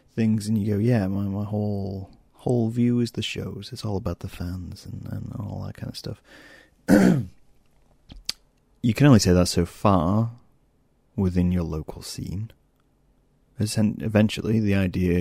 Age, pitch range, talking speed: 30-49, 90-115 Hz, 160 wpm